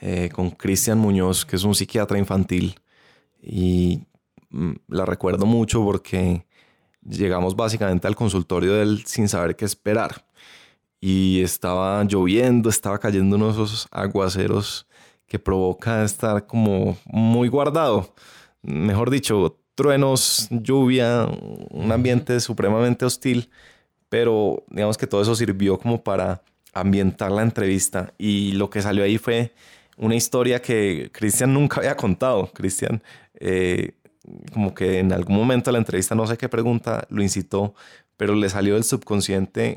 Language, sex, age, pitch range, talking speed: Spanish, male, 20-39, 95-115 Hz, 140 wpm